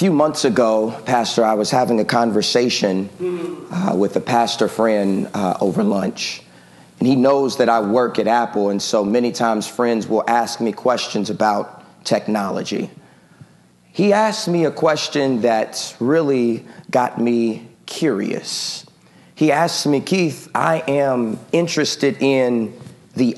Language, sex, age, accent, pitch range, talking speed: English, male, 40-59, American, 115-170 Hz, 145 wpm